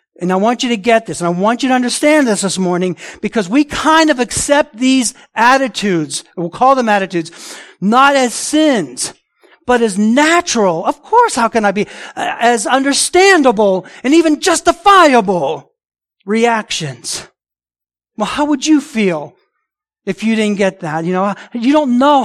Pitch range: 180-255 Hz